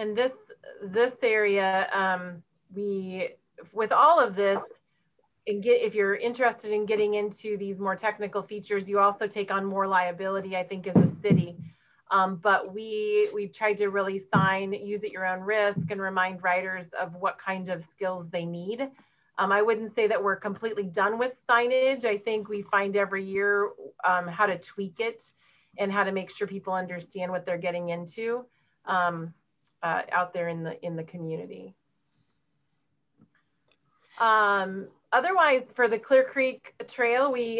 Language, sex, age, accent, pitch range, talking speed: English, female, 30-49, American, 190-225 Hz, 170 wpm